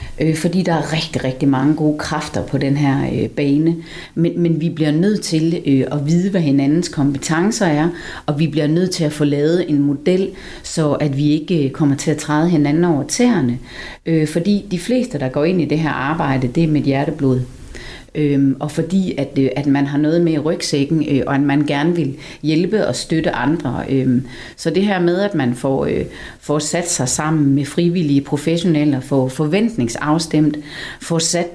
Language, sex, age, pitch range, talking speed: Danish, female, 40-59, 140-165 Hz, 195 wpm